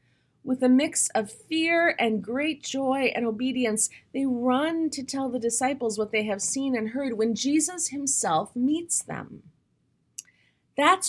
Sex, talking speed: female, 150 wpm